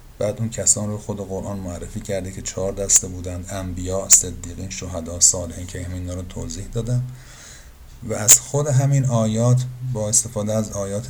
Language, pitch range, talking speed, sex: Persian, 95-115 Hz, 170 wpm, male